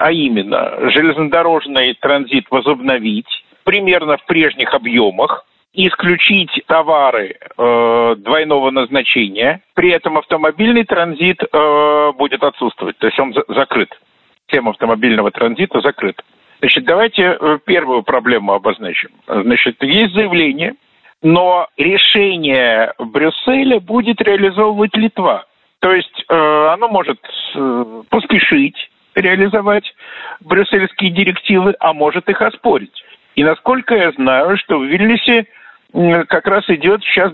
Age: 50-69